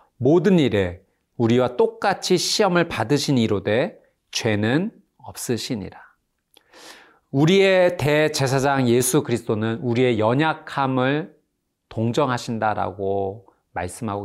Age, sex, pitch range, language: 40-59, male, 110-140 Hz, Korean